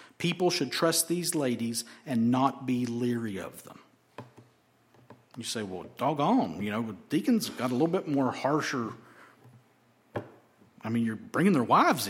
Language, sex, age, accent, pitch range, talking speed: English, male, 50-69, American, 120-160 Hz, 150 wpm